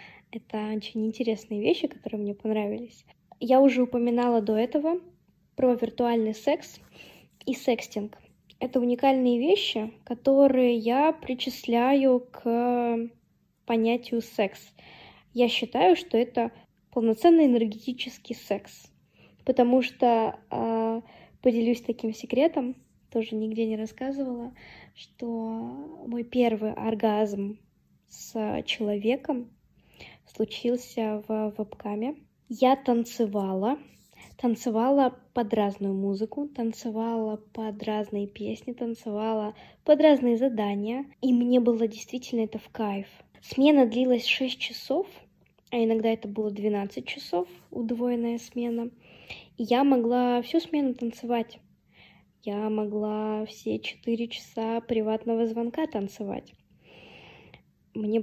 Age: 20-39